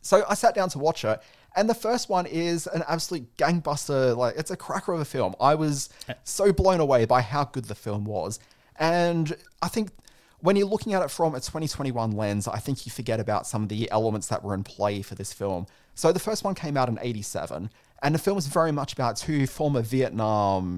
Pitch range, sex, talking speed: 100-135 Hz, male, 230 wpm